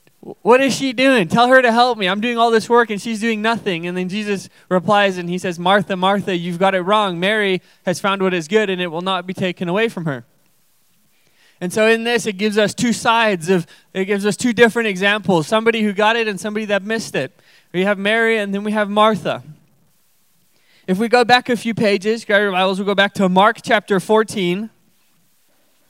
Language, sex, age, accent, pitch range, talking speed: English, male, 20-39, American, 185-220 Hz, 220 wpm